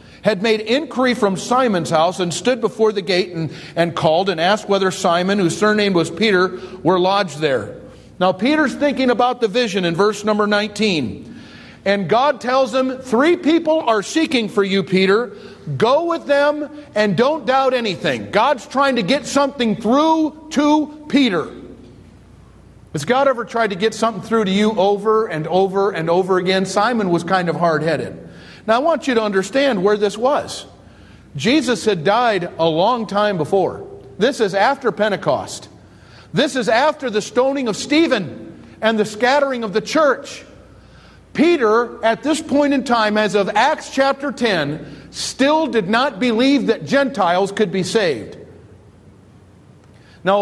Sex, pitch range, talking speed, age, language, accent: male, 185-260 Hz, 160 wpm, 40-59, English, American